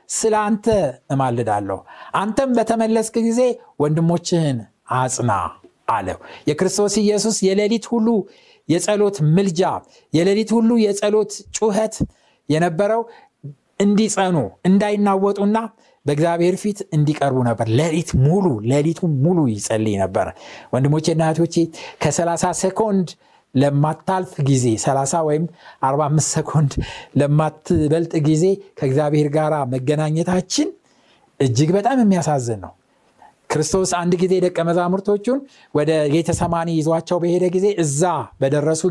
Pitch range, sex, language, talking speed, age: 150-205 Hz, male, Amharic, 95 wpm, 60-79